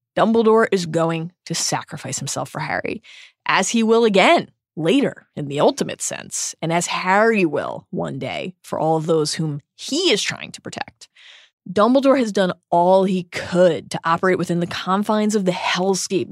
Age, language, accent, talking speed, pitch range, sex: 20-39, English, American, 175 wpm, 165-210 Hz, female